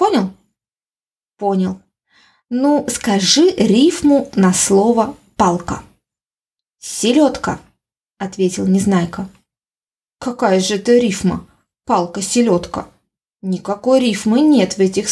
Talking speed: 85 wpm